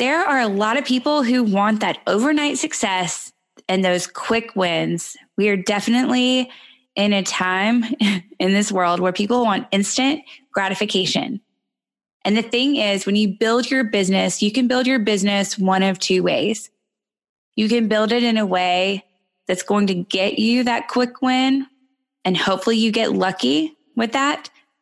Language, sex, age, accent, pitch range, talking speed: English, female, 20-39, American, 185-245 Hz, 165 wpm